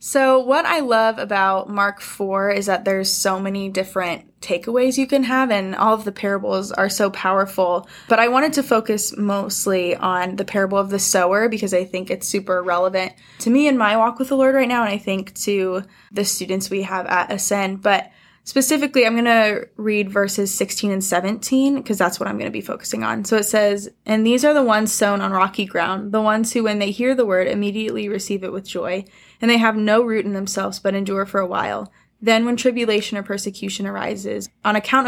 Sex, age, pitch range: female, 10-29, 195-225 Hz